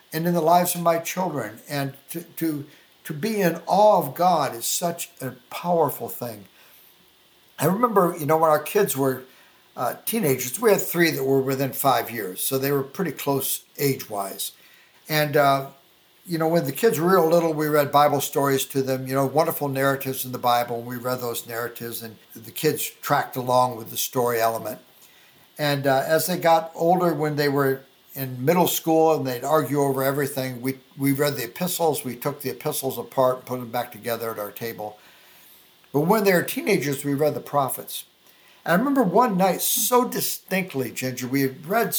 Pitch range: 130-170 Hz